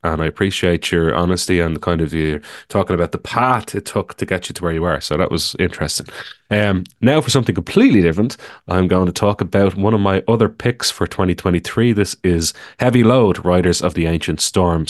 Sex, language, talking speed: male, English, 220 wpm